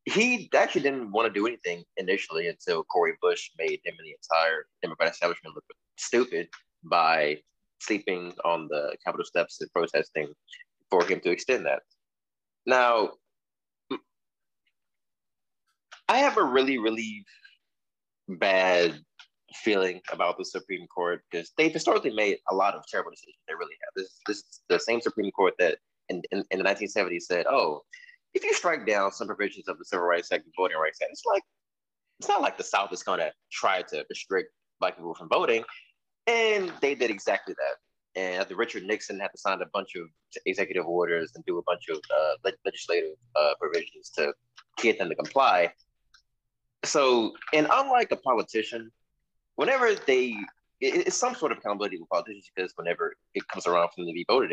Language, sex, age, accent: English, male, 20-39, American